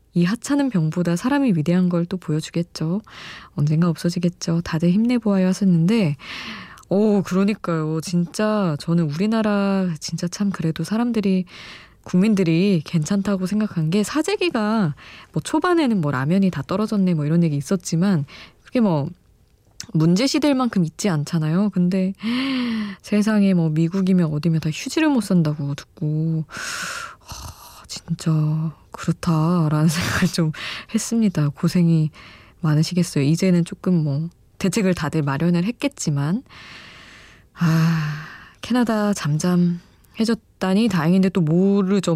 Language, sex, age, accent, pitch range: Korean, female, 20-39, native, 160-205 Hz